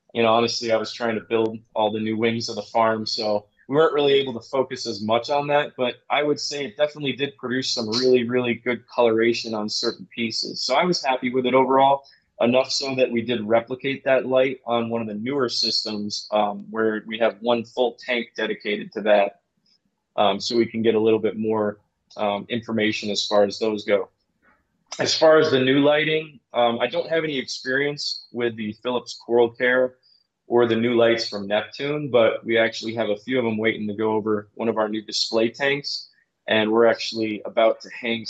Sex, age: male, 20-39